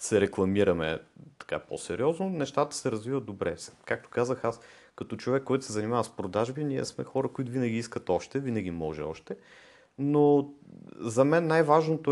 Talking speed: 160 wpm